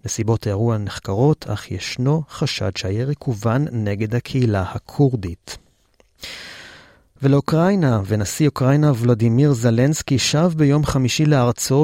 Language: Hebrew